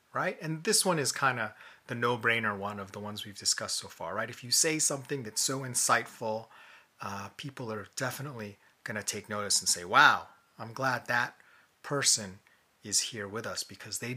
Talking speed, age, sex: 200 wpm, 30-49, male